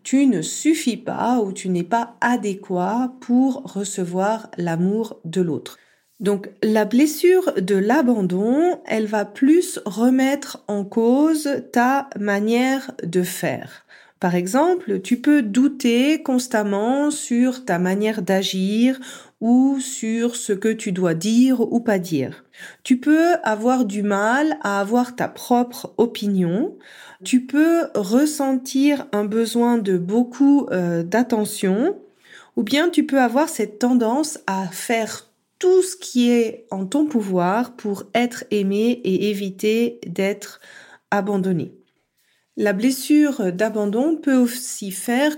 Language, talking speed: French, 130 wpm